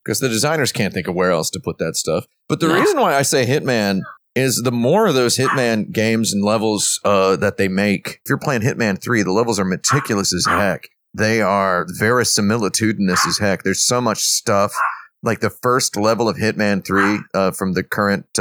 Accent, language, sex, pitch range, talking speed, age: American, English, male, 90-105 Hz, 205 wpm, 30-49